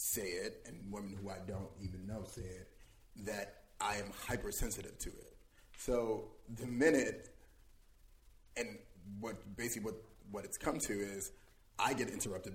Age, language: 30-49, English